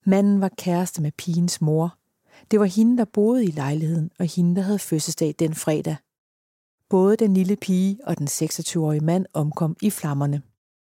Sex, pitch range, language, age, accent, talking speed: female, 160-200 Hz, Danish, 40-59, native, 170 wpm